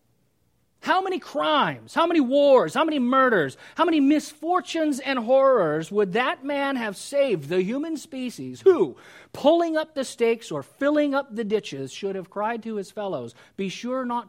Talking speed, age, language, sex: 170 wpm, 40-59, English, male